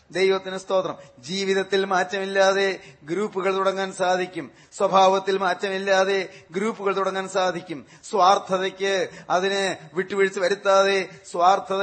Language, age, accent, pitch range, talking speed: Malayalam, 30-49, native, 185-195 Hz, 85 wpm